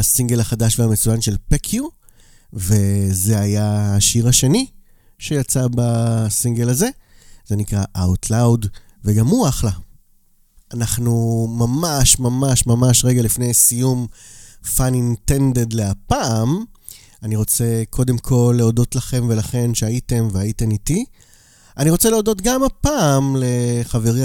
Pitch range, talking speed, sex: 110-145 Hz, 105 wpm, male